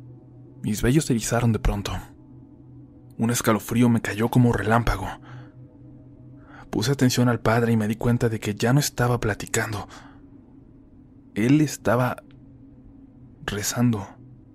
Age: 20-39